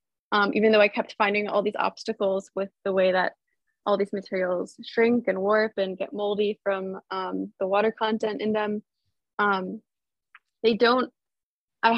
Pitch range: 200-230 Hz